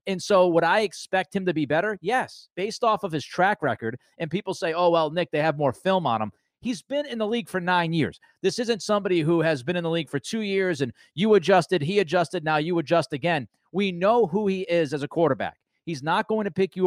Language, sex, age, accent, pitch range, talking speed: English, male, 30-49, American, 150-190 Hz, 255 wpm